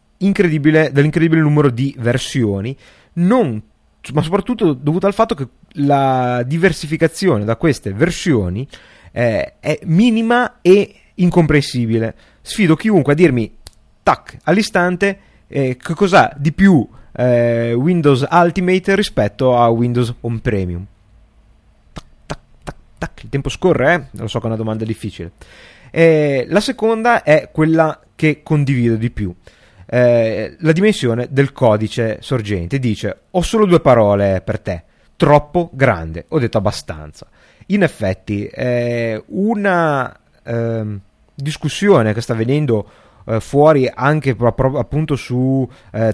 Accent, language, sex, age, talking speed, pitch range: native, Italian, male, 30-49, 130 wpm, 110-160 Hz